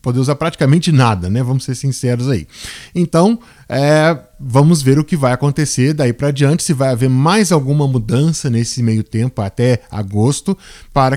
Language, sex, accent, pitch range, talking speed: Portuguese, male, Brazilian, 120-155 Hz, 170 wpm